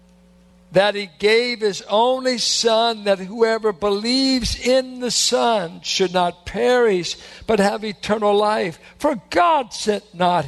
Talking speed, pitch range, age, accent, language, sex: 130 wpm, 180-245 Hz, 60-79, American, English, male